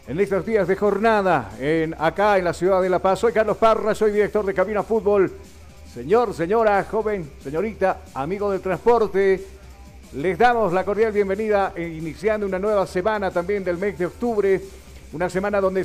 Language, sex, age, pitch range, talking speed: Spanish, male, 50-69, 160-205 Hz, 165 wpm